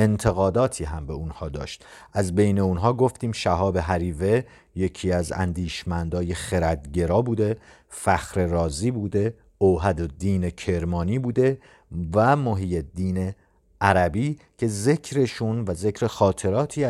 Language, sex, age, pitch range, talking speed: Persian, male, 50-69, 85-115 Hz, 115 wpm